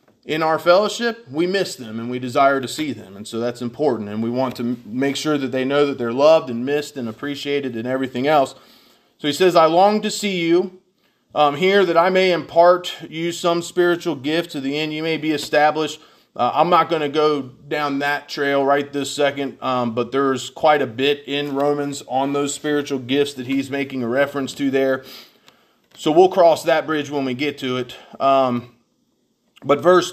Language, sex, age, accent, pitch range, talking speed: English, male, 30-49, American, 125-160 Hz, 205 wpm